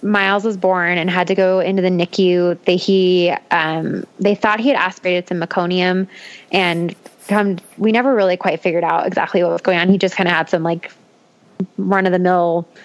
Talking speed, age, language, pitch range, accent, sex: 205 wpm, 20-39, English, 180-205 Hz, American, female